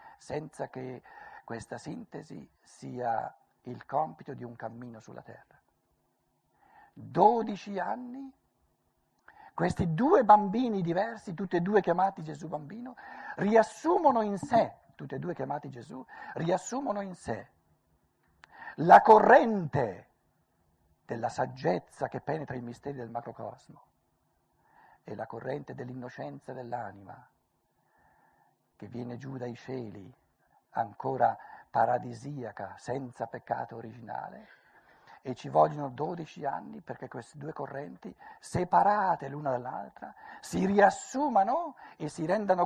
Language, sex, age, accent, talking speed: Italian, male, 60-79, native, 110 wpm